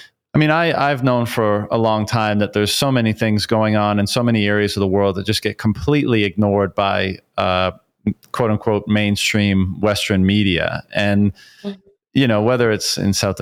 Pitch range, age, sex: 100-115 Hz, 30-49, male